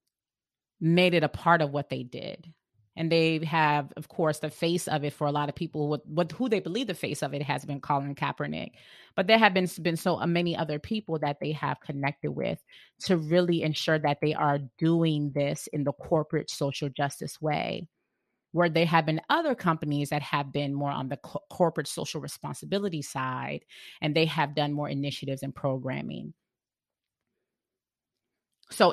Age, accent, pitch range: 30-49, American, 145-165 Hz